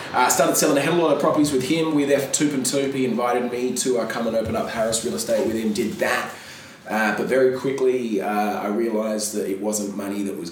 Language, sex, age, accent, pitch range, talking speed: English, male, 20-39, Australian, 95-125 Hz, 245 wpm